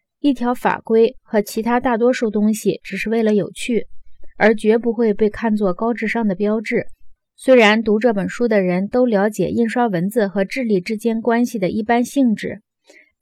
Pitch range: 200-250 Hz